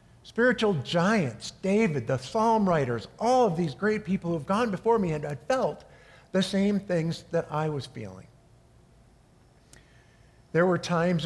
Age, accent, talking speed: 50-69, American, 155 wpm